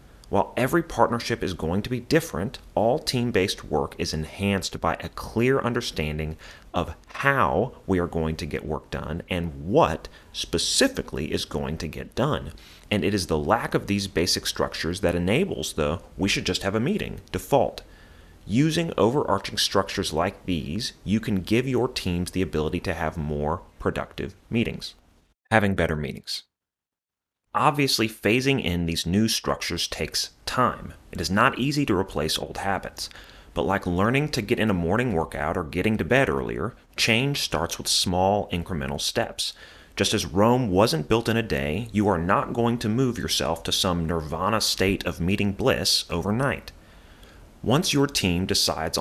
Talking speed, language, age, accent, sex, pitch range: 165 wpm, English, 30-49, American, male, 80-110 Hz